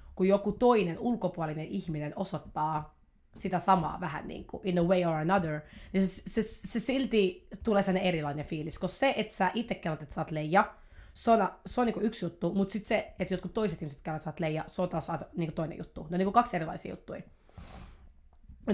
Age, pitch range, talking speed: 30-49, 155-200 Hz, 215 wpm